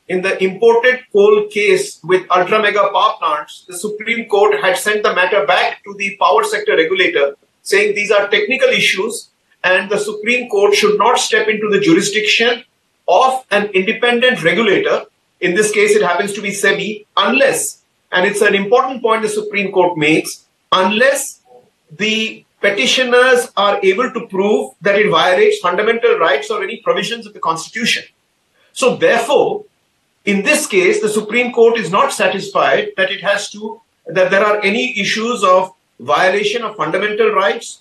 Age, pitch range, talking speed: 50-69, 195-255 Hz, 160 wpm